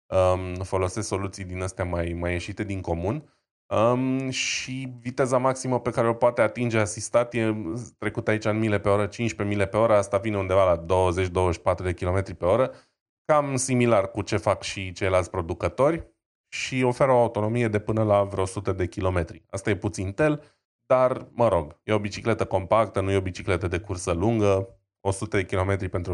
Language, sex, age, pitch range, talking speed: Romanian, male, 20-39, 95-115 Hz, 185 wpm